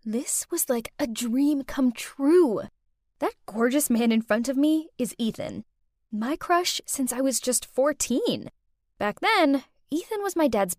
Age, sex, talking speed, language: 10-29, female, 160 wpm, English